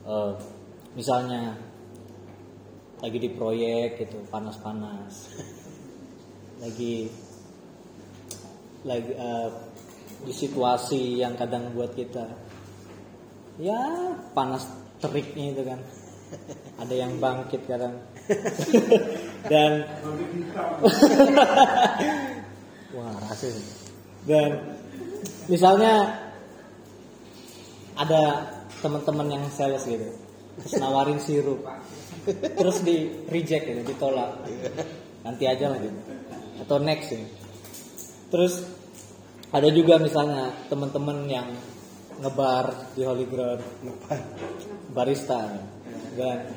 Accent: native